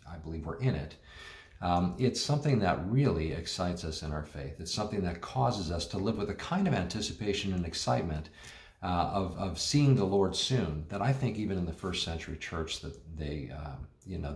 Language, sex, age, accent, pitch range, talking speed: English, male, 50-69, American, 80-95 Hz, 190 wpm